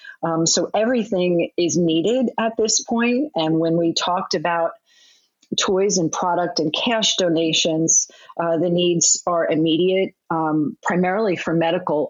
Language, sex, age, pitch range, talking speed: English, female, 40-59, 165-190 Hz, 140 wpm